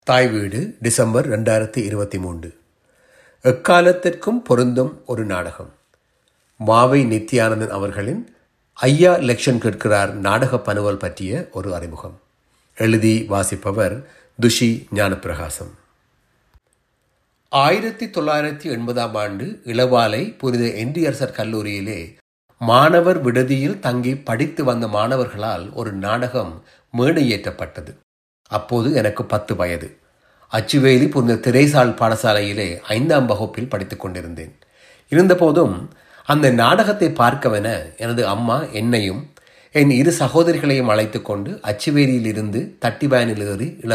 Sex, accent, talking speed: male, native, 95 wpm